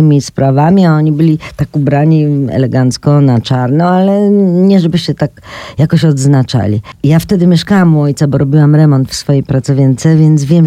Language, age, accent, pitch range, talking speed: Polish, 40-59, native, 140-175 Hz, 165 wpm